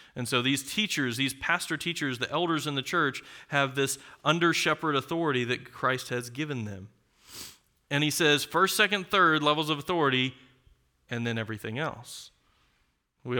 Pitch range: 125-150 Hz